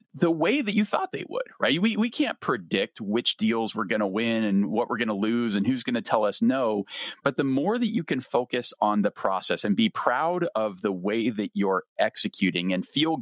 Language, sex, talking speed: English, male, 235 wpm